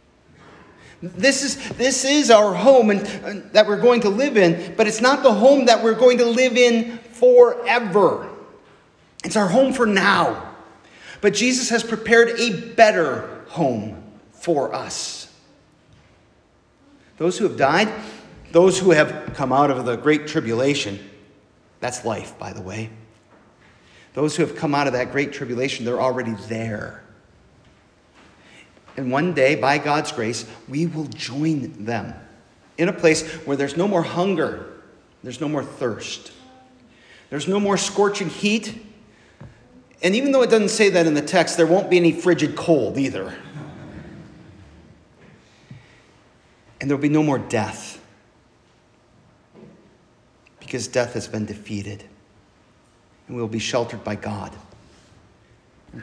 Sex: male